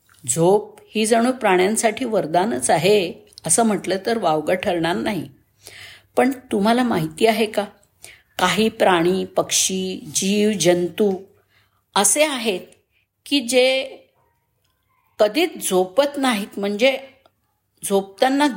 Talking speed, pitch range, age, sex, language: 100 wpm, 175-245 Hz, 50-69, female, Marathi